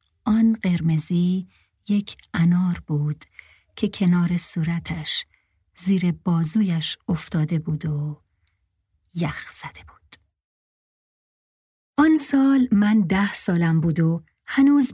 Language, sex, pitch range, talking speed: Persian, female, 155-215 Hz, 95 wpm